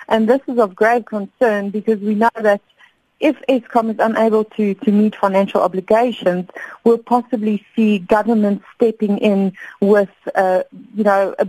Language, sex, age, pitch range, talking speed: English, female, 30-49, 190-225 Hz, 155 wpm